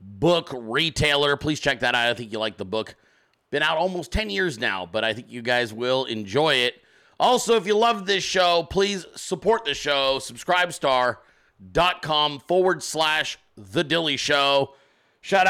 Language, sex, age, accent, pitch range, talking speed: English, male, 40-59, American, 125-165 Hz, 165 wpm